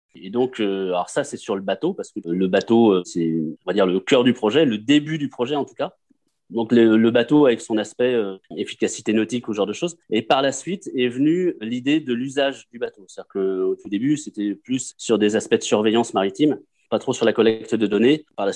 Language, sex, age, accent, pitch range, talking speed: French, male, 30-49, French, 105-130 Hz, 240 wpm